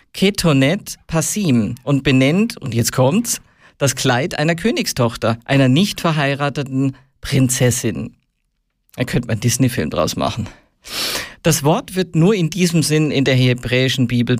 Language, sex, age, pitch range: German, male, 50-69, 125-170 Hz